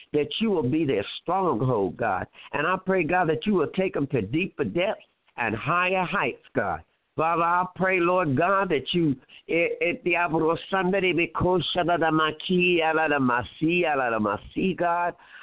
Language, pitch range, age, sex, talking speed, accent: English, 155-195 Hz, 60-79, male, 120 wpm, American